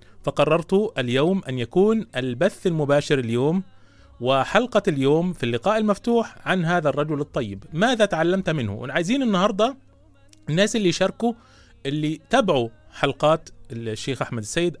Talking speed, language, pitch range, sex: 120 wpm, Arabic, 120-190 Hz, male